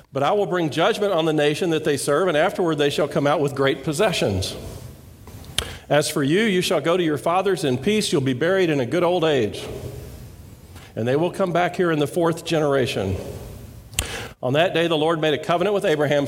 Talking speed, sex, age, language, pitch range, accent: 220 wpm, male, 50-69, English, 125-175 Hz, American